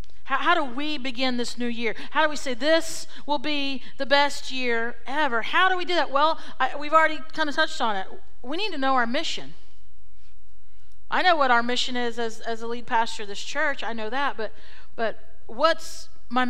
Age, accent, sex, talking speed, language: 40-59, American, female, 215 wpm, English